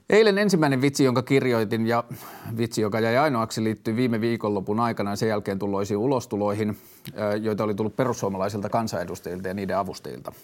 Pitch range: 100-125 Hz